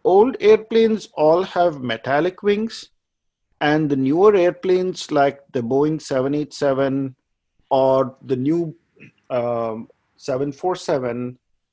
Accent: Indian